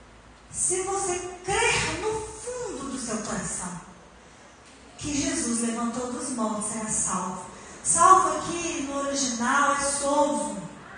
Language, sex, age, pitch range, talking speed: Portuguese, female, 40-59, 215-315 Hz, 115 wpm